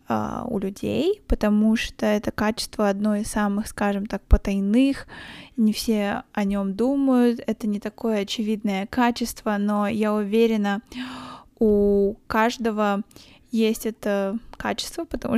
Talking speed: 120 wpm